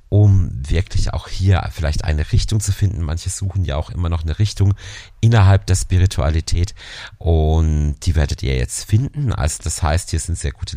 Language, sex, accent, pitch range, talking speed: German, male, German, 80-105 Hz, 185 wpm